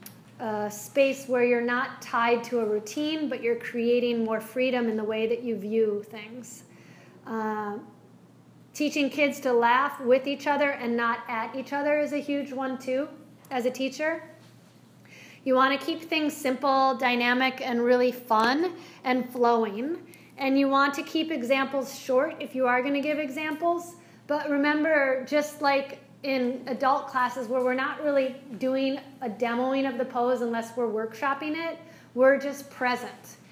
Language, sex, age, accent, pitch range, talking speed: English, female, 40-59, American, 240-280 Hz, 165 wpm